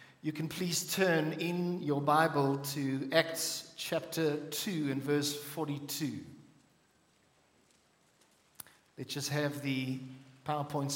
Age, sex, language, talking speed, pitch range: 50-69, male, English, 105 wpm, 145-185 Hz